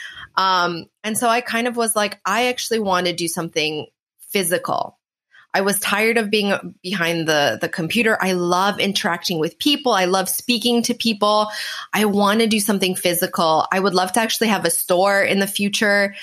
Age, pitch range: 20-39, 175-220 Hz